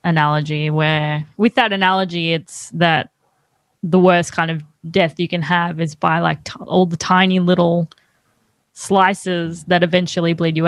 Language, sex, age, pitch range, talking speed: English, female, 10-29, 165-185 Hz, 155 wpm